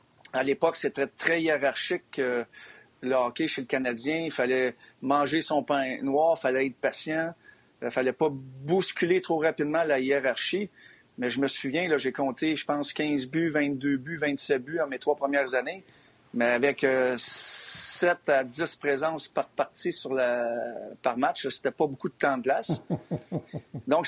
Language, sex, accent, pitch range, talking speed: French, male, Canadian, 130-155 Hz, 170 wpm